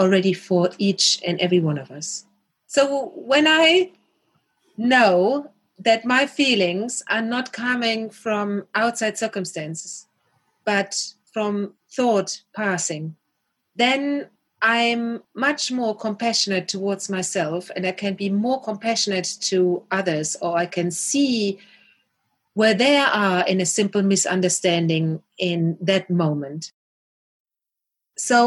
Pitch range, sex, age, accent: 180-225 Hz, female, 30-49, German